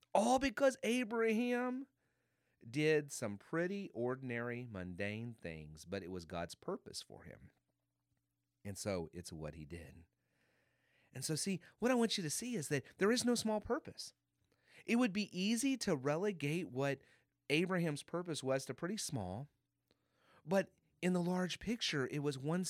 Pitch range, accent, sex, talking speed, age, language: 130-190 Hz, American, male, 155 wpm, 30-49, English